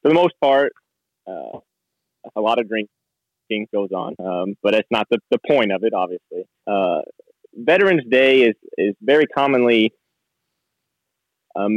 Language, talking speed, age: English, 150 wpm, 20-39